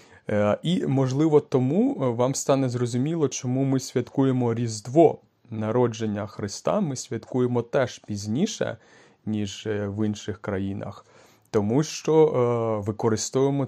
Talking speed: 100 wpm